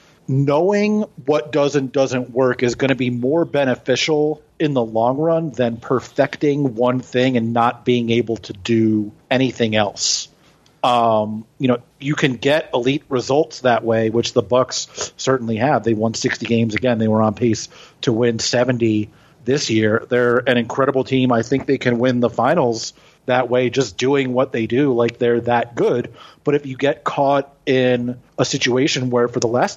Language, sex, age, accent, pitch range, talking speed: English, male, 40-59, American, 120-140 Hz, 185 wpm